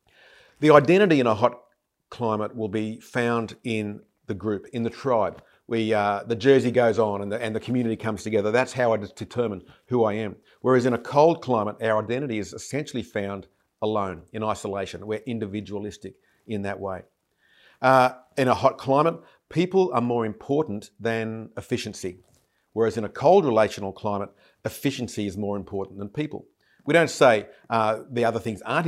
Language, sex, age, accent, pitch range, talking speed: English, male, 50-69, Australian, 105-125 Hz, 170 wpm